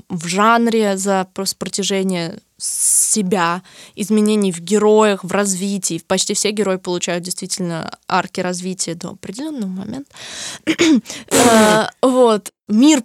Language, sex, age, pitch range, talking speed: Russian, female, 20-39, 195-245 Hz, 100 wpm